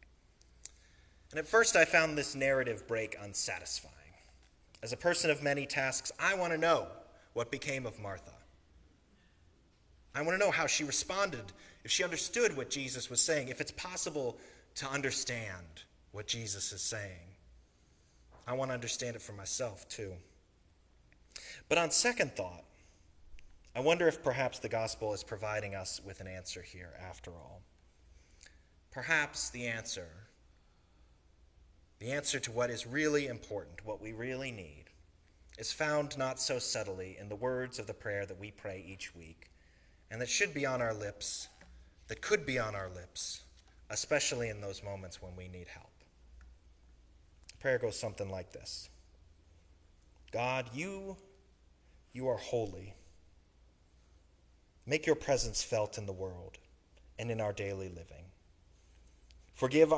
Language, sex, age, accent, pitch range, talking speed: English, male, 30-49, American, 80-125 Hz, 150 wpm